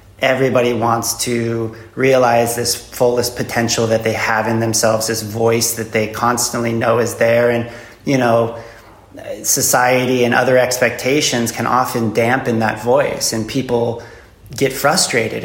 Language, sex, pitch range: German, male, 115-130 Hz